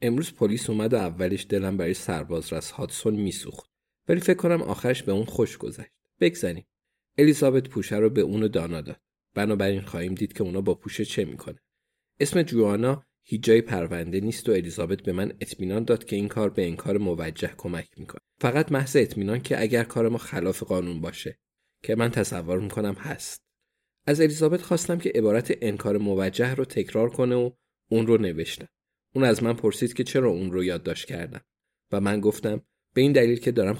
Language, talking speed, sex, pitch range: Persian, 180 wpm, male, 100-140 Hz